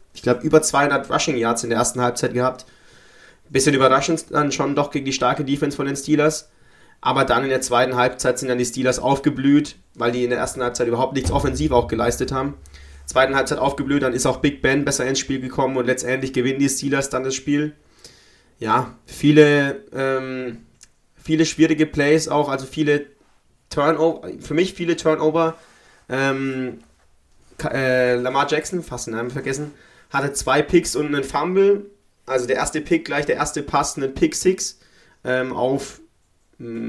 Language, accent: German, German